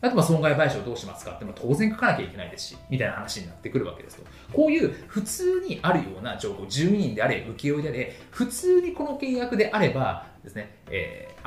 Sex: male